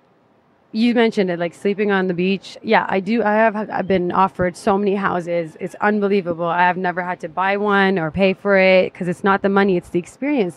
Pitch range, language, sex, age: 185-205 Hz, English, female, 20-39